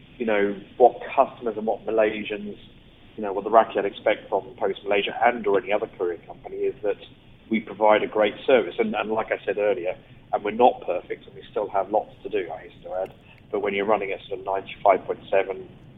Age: 40-59